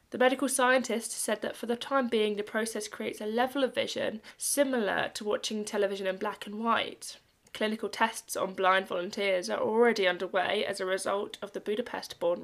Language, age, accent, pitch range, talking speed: English, 10-29, British, 200-245 Hz, 185 wpm